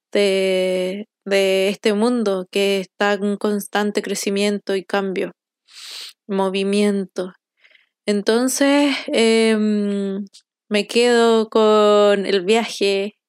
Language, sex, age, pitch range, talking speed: Spanish, female, 20-39, 195-230 Hz, 90 wpm